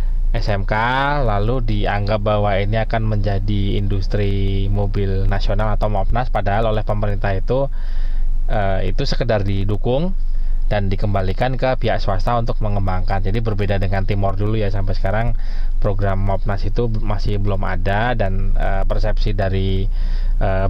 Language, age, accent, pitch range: Indonesian, 20-39, native, 100-110 Hz